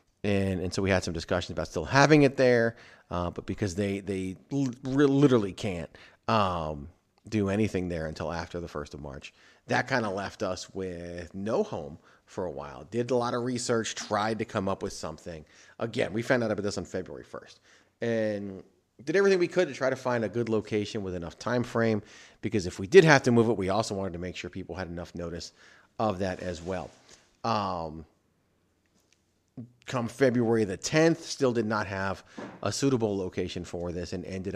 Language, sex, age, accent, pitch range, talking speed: English, male, 40-59, American, 90-115 Hz, 200 wpm